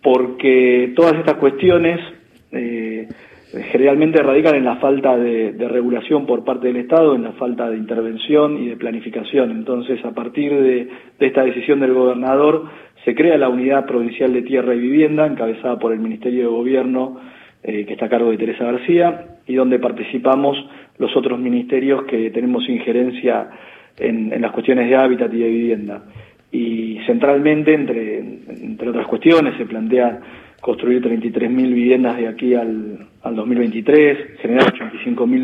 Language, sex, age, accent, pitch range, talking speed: Spanish, male, 40-59, Argentinian, 125-150 Hz, 155 wpm